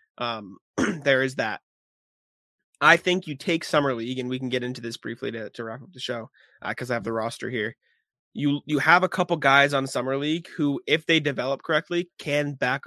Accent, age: American, 20-39